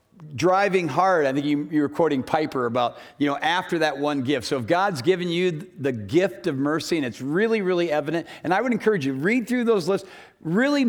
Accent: American